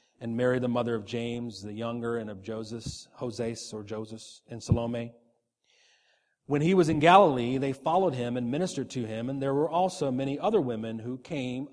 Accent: American